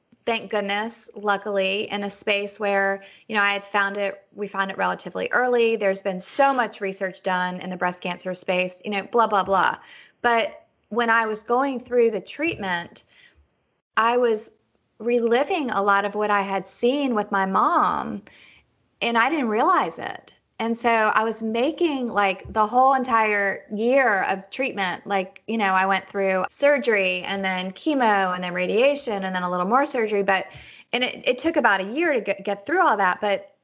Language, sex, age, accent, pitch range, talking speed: English, female, 20-39, American, 195-230 Hz, 190 wpm